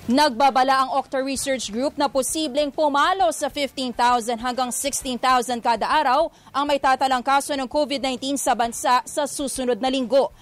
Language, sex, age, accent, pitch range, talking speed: English, female, 20-39, Filipino, 245-285 Hz, 150 wpm